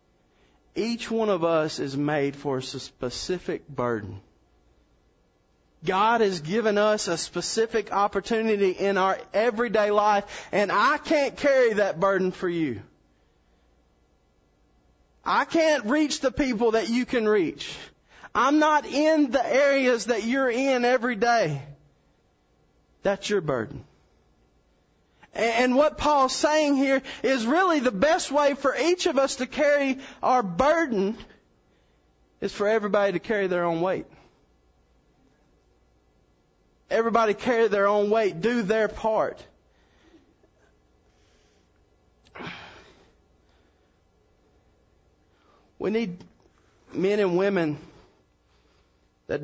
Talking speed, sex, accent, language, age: 110 wpm, male, American, English, 30-49